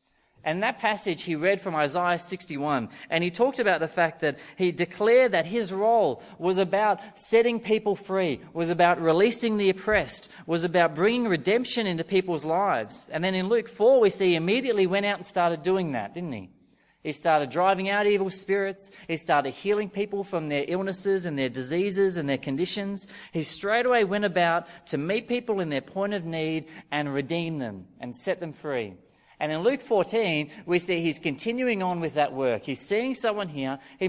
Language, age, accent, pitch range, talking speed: English, 30-49, Australian, 150-200 Hz, 190 wpm